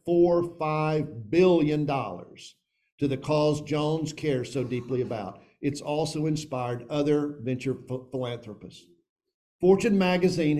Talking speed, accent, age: 110 wpm, American, 50-69